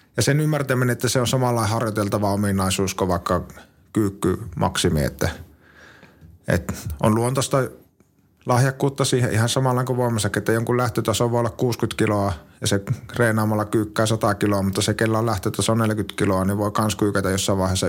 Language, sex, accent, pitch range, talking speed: Finnish, male, native, 95-110 Hz, 160 wpm